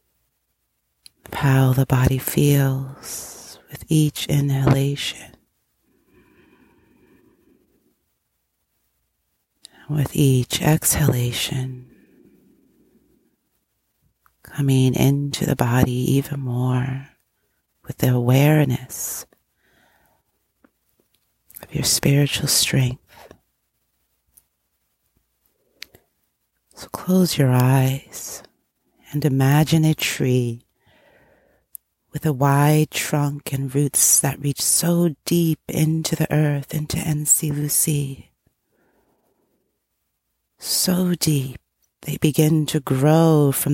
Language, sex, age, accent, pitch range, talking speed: English, female, 30-49, American, 125-155 Hz, 75 wpm